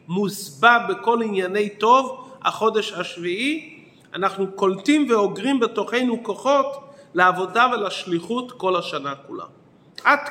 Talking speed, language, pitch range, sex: 100 wpm, Hebrew, 180-230 Hz, male